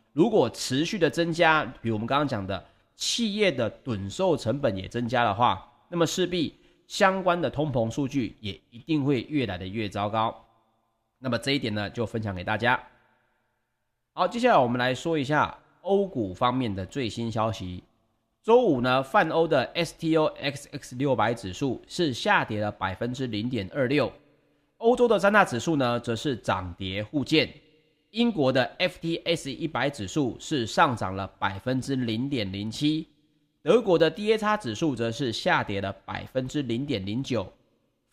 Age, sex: 30-49, male